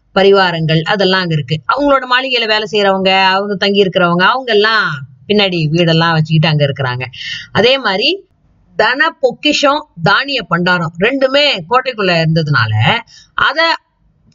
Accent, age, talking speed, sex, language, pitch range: native, 30-49, 115 wpm, female, Tamil, 180-270 Hz